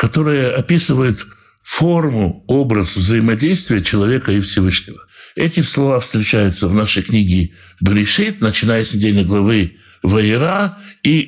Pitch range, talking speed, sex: 100-145 Hz, 110 wpm, male